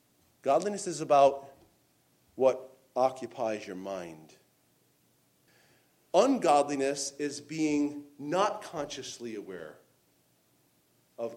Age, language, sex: 40-59, English, male